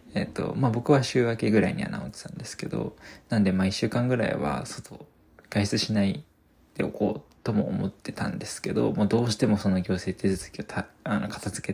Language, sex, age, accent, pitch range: Japanese, male, 20-39, native, 95-115 Hz